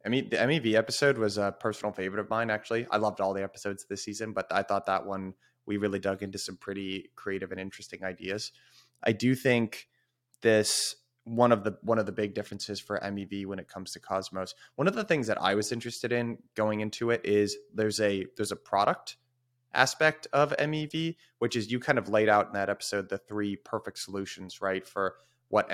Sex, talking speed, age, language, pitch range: male, 210 wpm, 20-39, English, 100-115 Hz